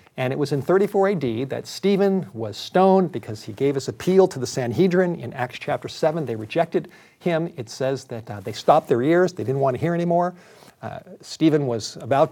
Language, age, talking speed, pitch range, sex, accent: English, 50-69, 210 wpm, 120-165 Hz, male, American